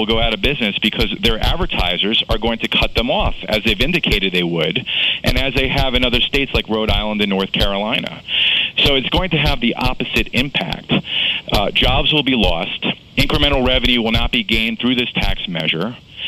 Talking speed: 200 wpm